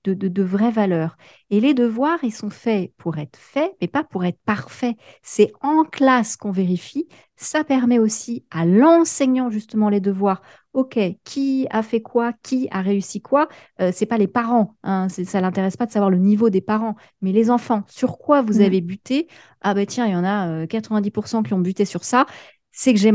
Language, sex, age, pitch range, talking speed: French, female, 30-49, 195-250 Hz, 215 wpm